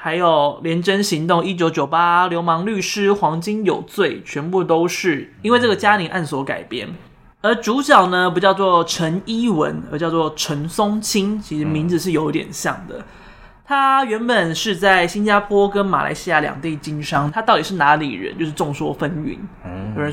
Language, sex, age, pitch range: Chinese, male, 20-39, 155-200 Hz